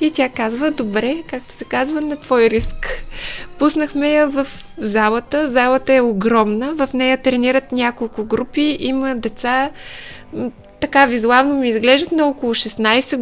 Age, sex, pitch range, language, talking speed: 20-39, female, 240-280 Hz, Bulgarian, 140 wpm